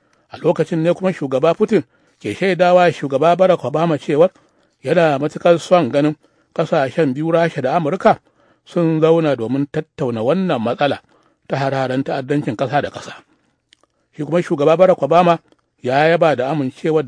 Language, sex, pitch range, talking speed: English, male, 140-175 Hz, 150 wpm